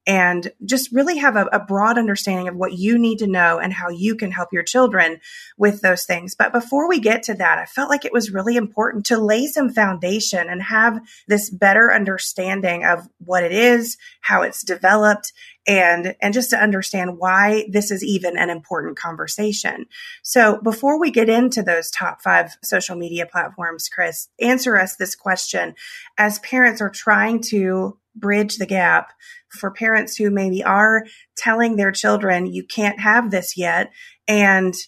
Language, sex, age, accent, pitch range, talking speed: English, female, 30-49, American, 185-230 Hz, 175 wpm